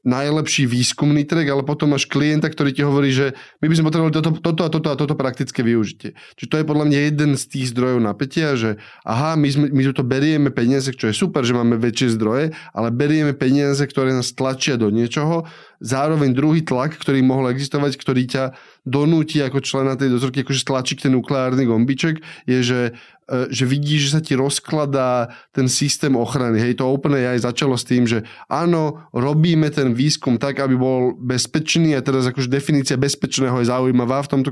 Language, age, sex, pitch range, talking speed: Slovak, 20-39, male, 130-150 Hz, 190 wpm